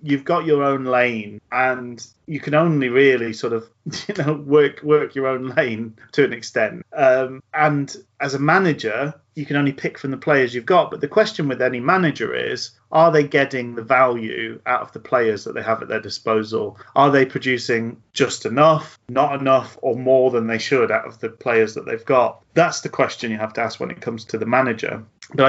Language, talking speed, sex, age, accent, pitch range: English, 215 wpm, male, 30-49, British, 110-140 Hz